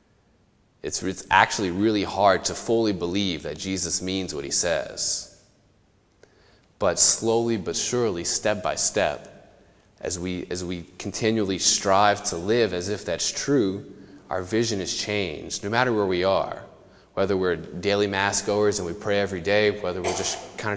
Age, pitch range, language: 20-39, 95-105 Hz, English